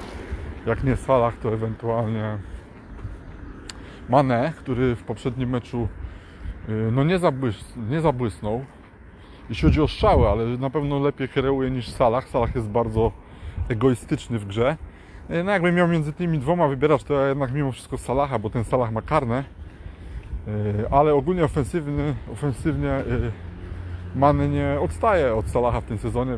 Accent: native